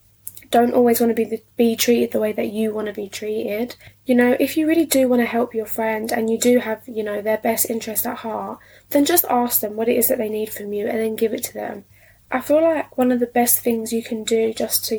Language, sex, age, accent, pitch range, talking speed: English, female, 10-29, British, 220-250 Hz, 270 wpm